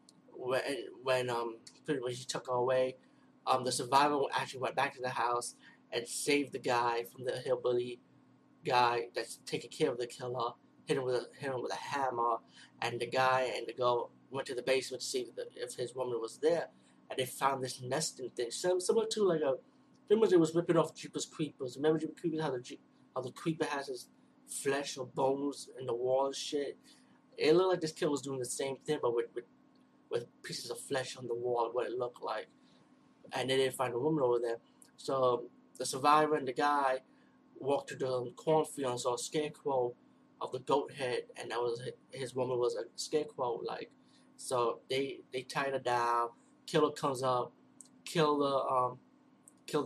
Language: English